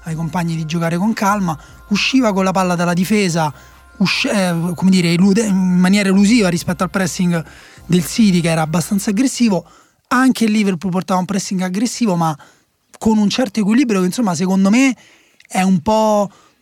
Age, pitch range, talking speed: 30-49, 170-210 Hz, 165 wpm